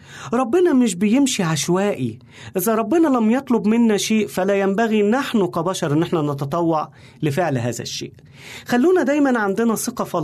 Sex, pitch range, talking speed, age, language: male, 135-220 Hz, 140 wpm, 40-59, Arabic